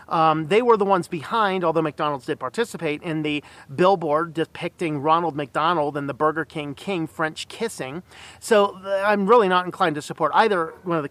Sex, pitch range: male, 150-190 Hz